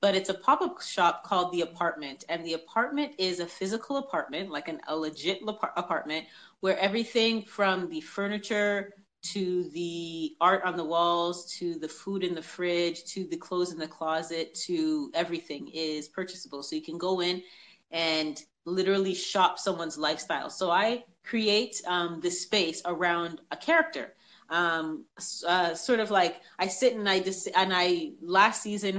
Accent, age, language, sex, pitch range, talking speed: American, 30-49, English, female, 165-195 Hz, 165 wpm